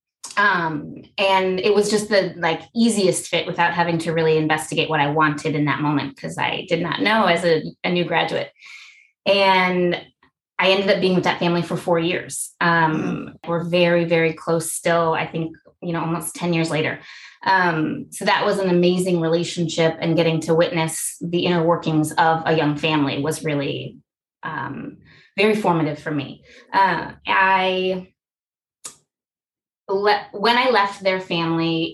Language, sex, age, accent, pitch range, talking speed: English, female, 20-39, American, 160-180 Hz, 165 wpm